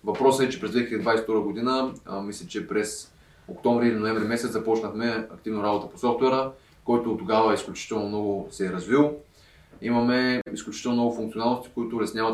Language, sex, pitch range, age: Bulgarian, male, 105-120 Hz, 20-39